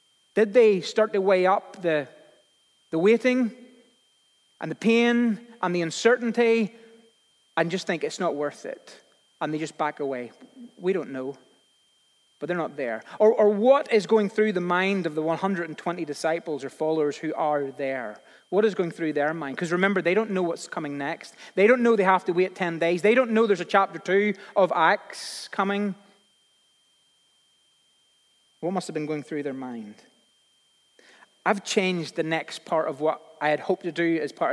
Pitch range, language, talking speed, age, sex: 170-225 Hz, English, 185 wpm, 30-49, male